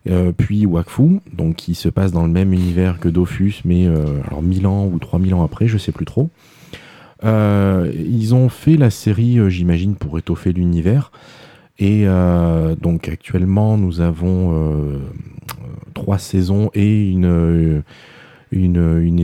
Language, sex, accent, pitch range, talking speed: French, male, French, 80-95 Hz, 155 wpm